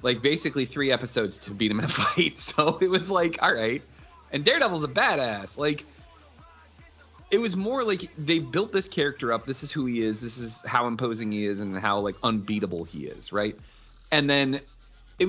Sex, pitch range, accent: male, 115-170 Hz, American